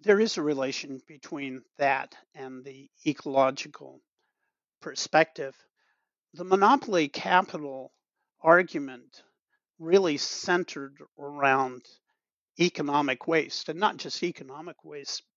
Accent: American